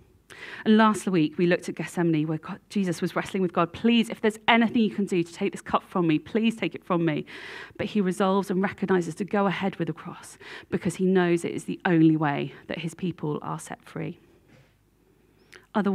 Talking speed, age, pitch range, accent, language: 215 wpm, 40-59, 160-195 Hz, British, English